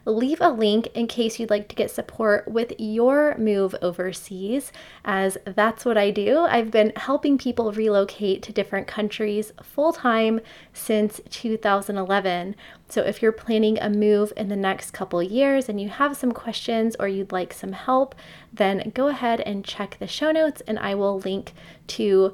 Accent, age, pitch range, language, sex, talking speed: American, 20-39, 205-240 Hz, English, female, 170 wpm